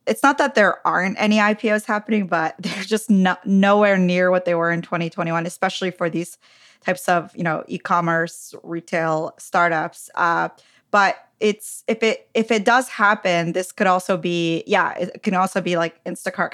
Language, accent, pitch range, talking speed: English, American, 175-210 Hz, 175 wpm